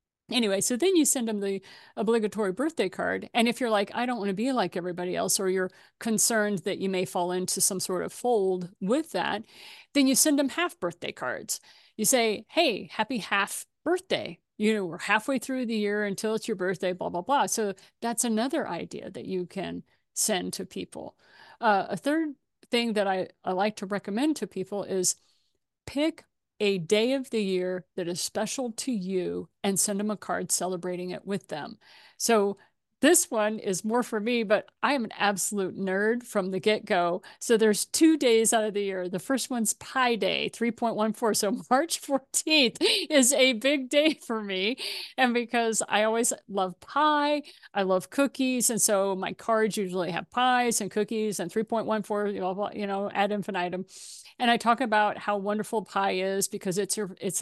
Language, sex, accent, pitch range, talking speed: English, female, American, 195-250 Hz, 190 wpm